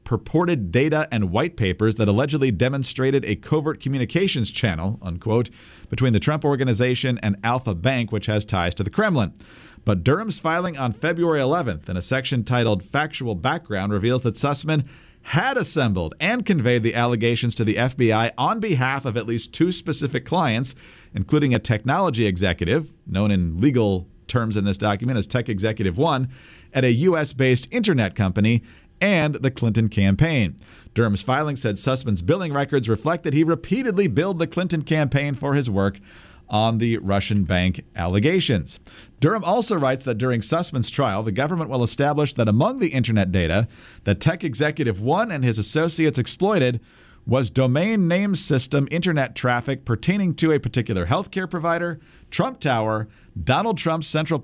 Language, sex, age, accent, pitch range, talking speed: English, male, 40-59, American, 110-155 Hz, 160 wpm